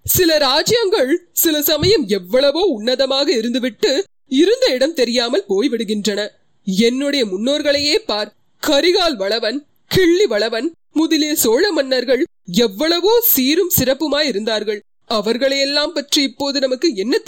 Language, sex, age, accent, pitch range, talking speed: Tamil, female, 30-49, native, 235-300 Hz, 100 wpm